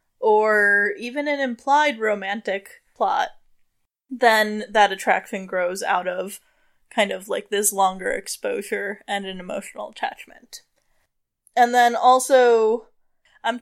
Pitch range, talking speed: 205-270 Hz, 115 wpm